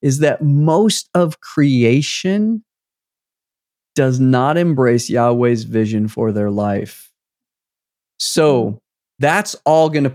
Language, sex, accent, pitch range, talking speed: English, male, American, 115-145 Hz, 105 wpm